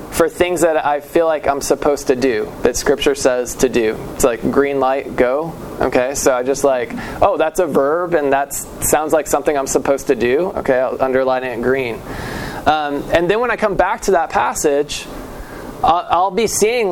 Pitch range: 145-190 Hz